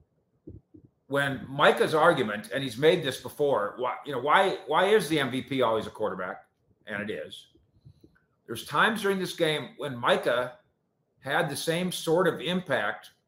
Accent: American